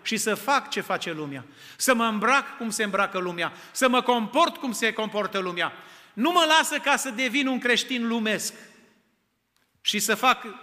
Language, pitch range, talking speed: Romanian, 195-250 Hz, 180 wpm